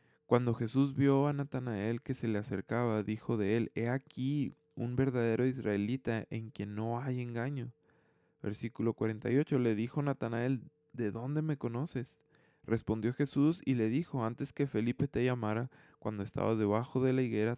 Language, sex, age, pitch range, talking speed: Spanish, male, 20-39, 110-140 Hz, 160 wpm